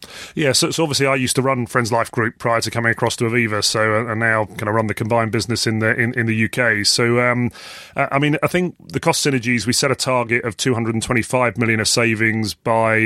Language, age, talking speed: English, 30-49, 255 wpm